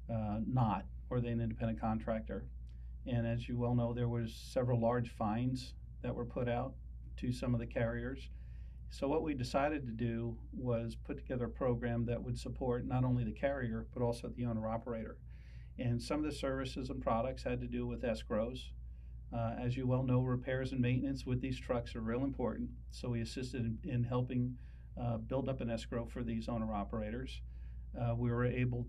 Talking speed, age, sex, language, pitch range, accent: 195 wpm, 50-69, male, English, 110-125 Hz, American